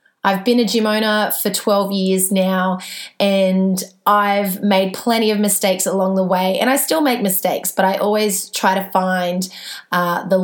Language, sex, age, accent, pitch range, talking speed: English, female, 20-39, Australian, 185-210 Hz, 180 wpm